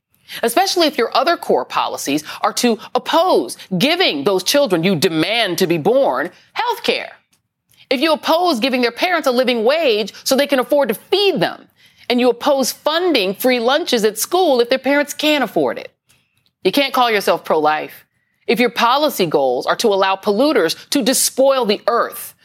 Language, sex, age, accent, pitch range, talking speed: English, female, 40-59, American, 205-285 Hz, 175 wpm